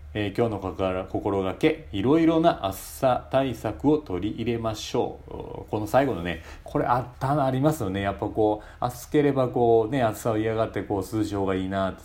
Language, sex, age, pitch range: Japanese, male, 40-59, 90-120 Hz